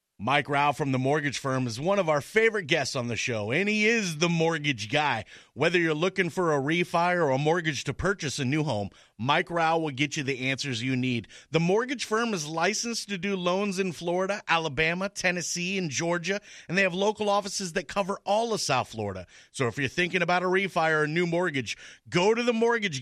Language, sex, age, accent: English, male, 30-49, American